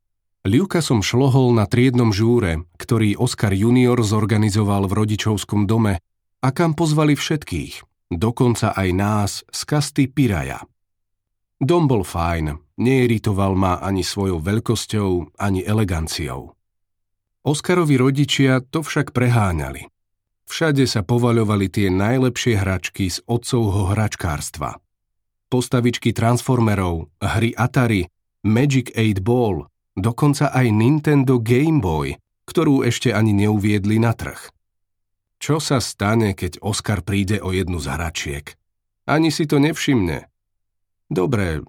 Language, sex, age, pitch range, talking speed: Slovak, male, 40-59, 95-125 Hz, 115 wpm